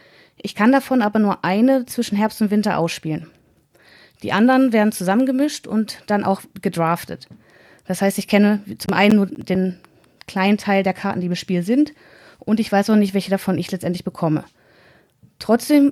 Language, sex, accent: German, female, German